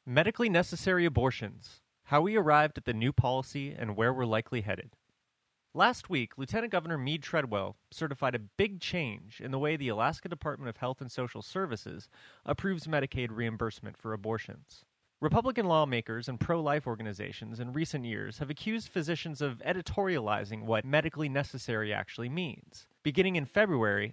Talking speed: 155 wpm